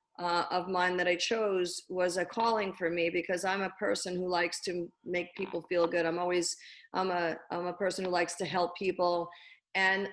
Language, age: English, 40-59